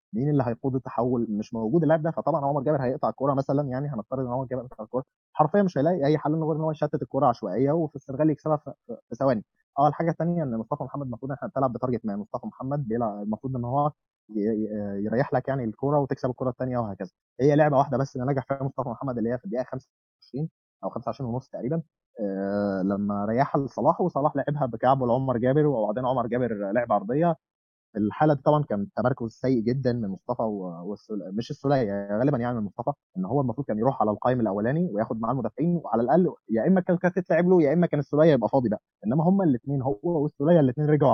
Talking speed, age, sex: 215 wpm, 20-39, male